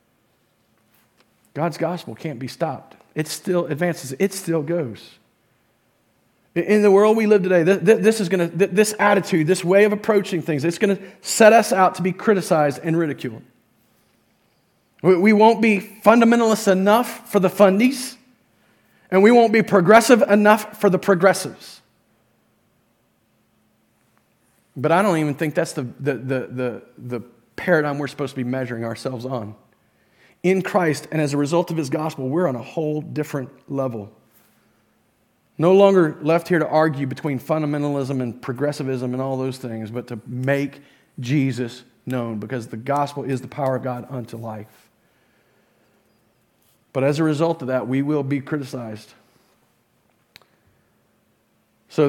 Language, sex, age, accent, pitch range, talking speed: English, male, 40-59, American, 130-185 Hz, 145 wpm